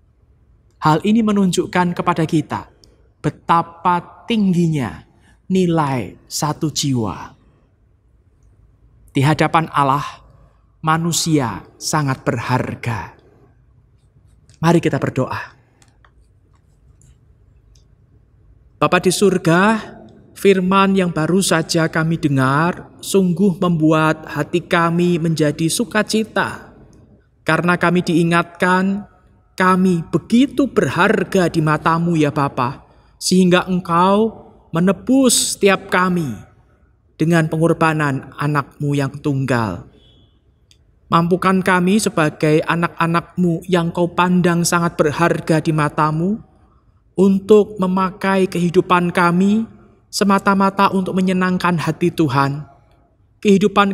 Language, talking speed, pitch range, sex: Indonesian, 85 wpm, 150-190 Hz, male